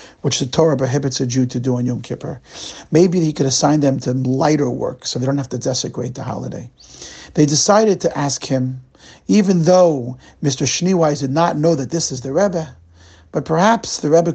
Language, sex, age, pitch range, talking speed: English, male, 50-69, 130-155 Hz, 200 wpm